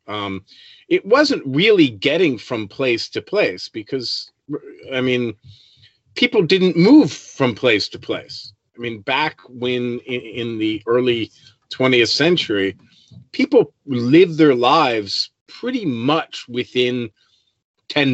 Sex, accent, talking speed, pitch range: male, American, 120 wpm, 110-155 Hz